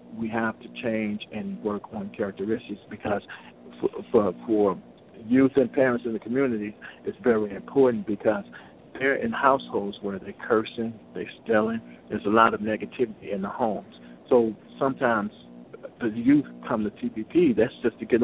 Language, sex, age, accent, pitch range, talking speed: English, male, 50-69, American, 105-115 Hz, 160 wpm